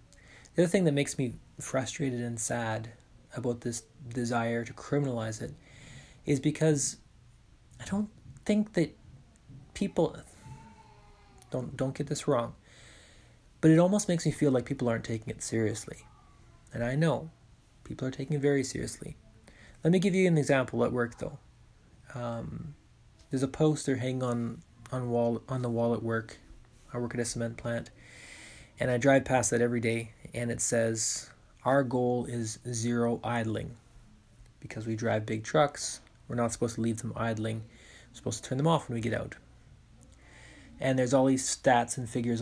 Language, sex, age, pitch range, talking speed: English, male, 20-39, 115-140 Hz, 170 wpm